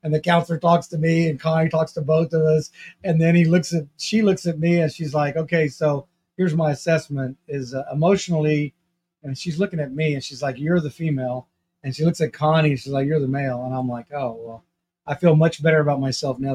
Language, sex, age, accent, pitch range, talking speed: English, male, 40-59, American, 130-165 Hz, 240 wpm